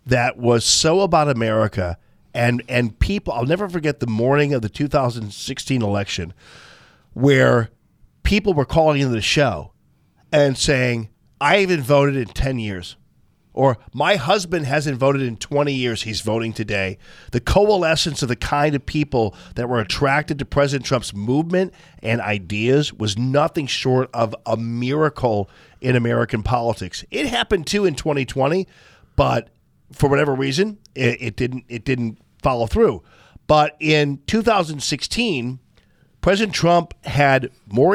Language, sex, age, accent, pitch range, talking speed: English, male, 40-59, American, 120-155 Hz, 145 wpm